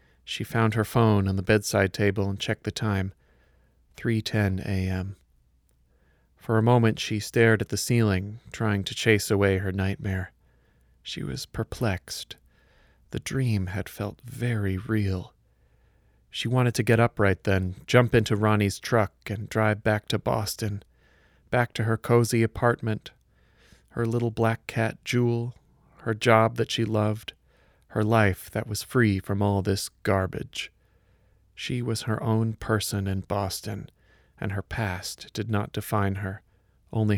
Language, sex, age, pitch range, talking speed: English, male, 40-59, 95-115 Hz, 150 wpm